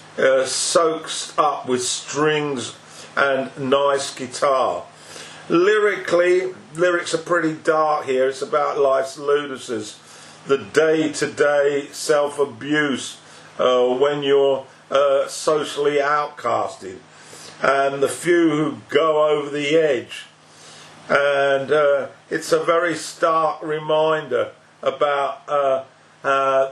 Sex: male